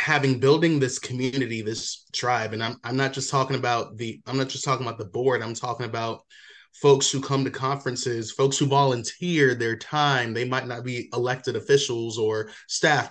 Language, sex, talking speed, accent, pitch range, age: English, male, 190 wpm, American, 115-140 Hz, 20-39